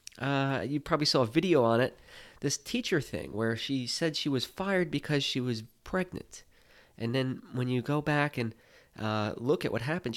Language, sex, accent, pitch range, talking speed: English, male, American, 115-155 Hz, 195 wpm